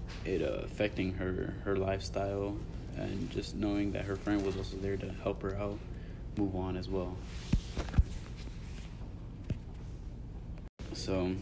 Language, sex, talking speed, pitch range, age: English, male, 125 wpm, 95-105 Hz, 20-39